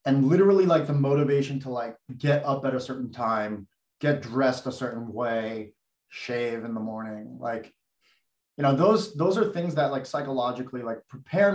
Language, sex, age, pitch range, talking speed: English, male, 30-49, 125-155 Hz, 175 wpm